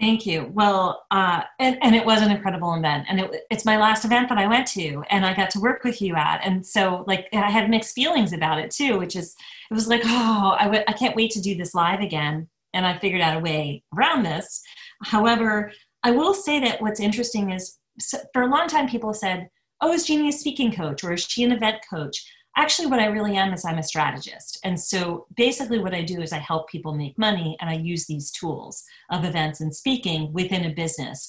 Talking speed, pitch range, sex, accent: 230 wpm, 165-220 Hz, female, American